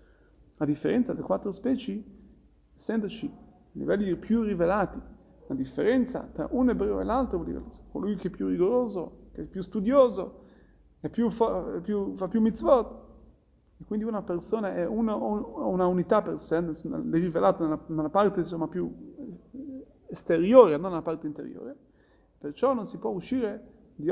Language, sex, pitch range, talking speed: Italian, male, 170-230 Hz, 155 wpm